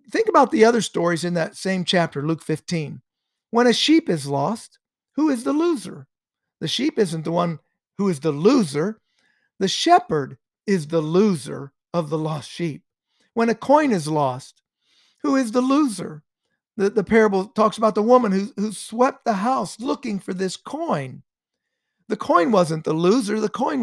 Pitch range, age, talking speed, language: 150-220 Hz, 50-69, 175 wpm, English